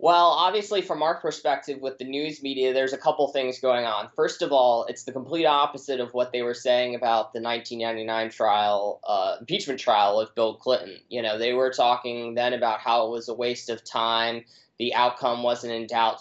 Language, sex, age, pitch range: English, male, 20-39, 115-130 Hz